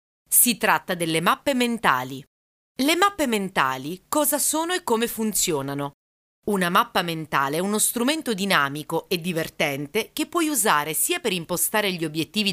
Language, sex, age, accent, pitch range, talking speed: Italian, female, 30-49, native, 155-215 Hz, 145 wpm